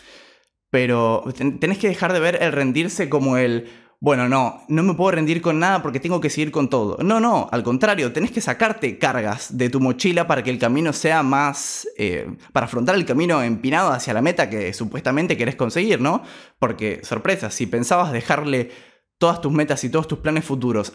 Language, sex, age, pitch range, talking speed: Spanish, male, 20-39, 120-165 Hz, 195 wpm